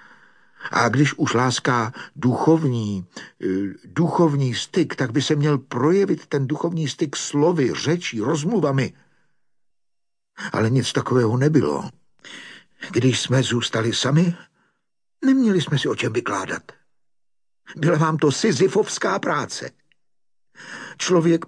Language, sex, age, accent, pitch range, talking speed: Czech, male, 60-79, native, 130-175 Hz, 105 wpm